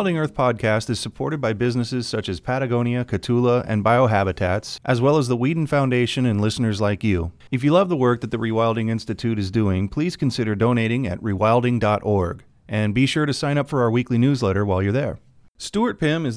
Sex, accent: male, American